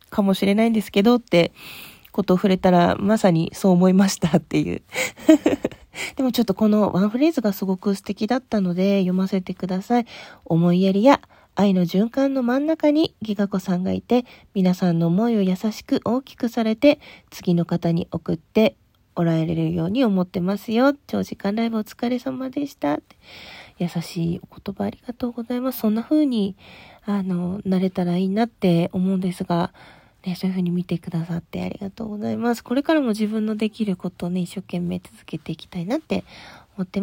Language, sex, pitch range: Japanese, female, 185-240 Hz